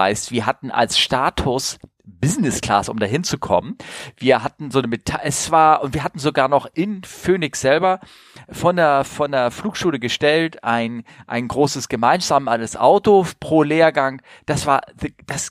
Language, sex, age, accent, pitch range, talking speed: German, male, 40-59, German, 125-160 Hz, 160 wpm